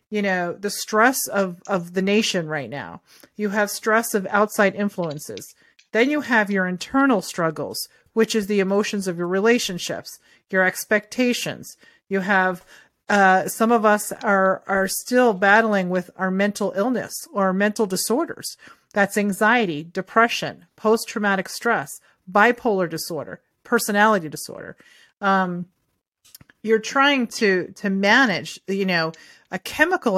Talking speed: 135 wpm